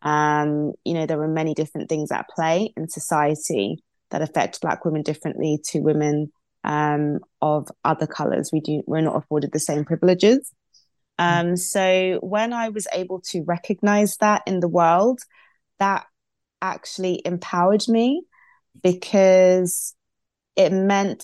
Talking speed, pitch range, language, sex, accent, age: 140 wpm, 160-185 Hz, English, female, British, 20-39